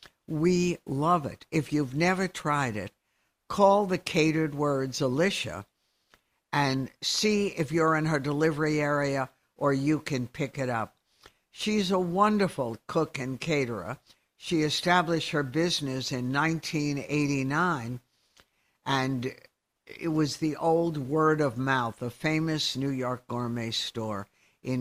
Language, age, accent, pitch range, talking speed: English, 60-79, American, 130-165 Hz, 130 wpm